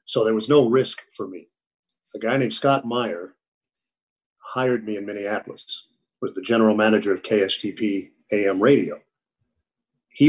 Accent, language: American, English